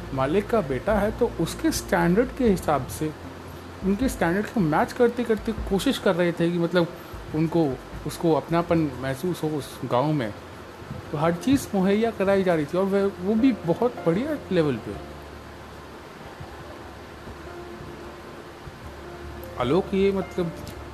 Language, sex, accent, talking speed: Hindi, male, native, 140 wpm